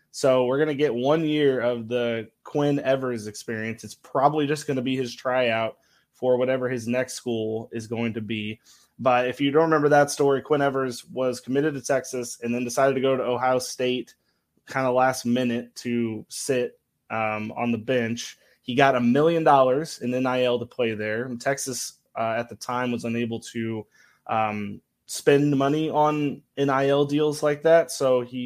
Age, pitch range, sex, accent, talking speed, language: 20-39, 120-140 Hz, male, American, 185 wpm, English